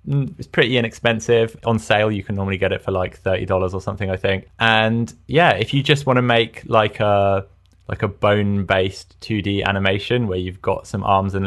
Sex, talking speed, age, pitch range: male, 200 wpm, 20-39, 95-115 Hz